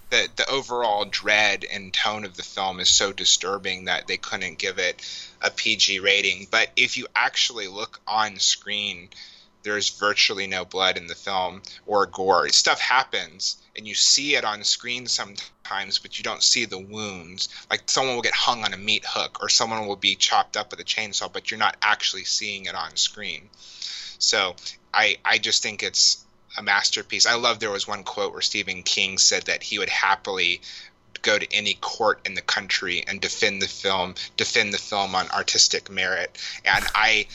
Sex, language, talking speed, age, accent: male, English, 190 wpm, 30-49, American